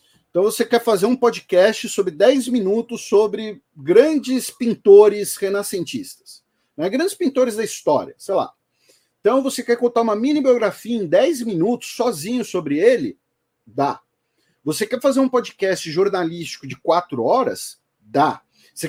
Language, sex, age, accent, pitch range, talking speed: Portuguese, male, 40-59, Brazilian, 170-250 Hz, 145 wpm